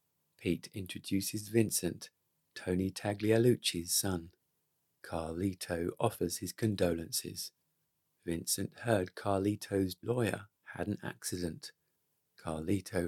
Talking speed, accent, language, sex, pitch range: 85 wpm, British, English, male, 85-110 Hz